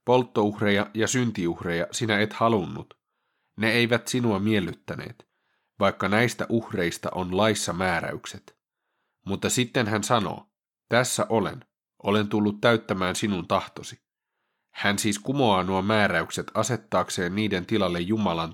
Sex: male